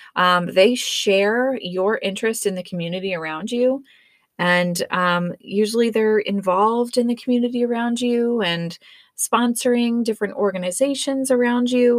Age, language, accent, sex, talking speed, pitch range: 30-49, English, American, female, 130 wpm, 180-235 Hz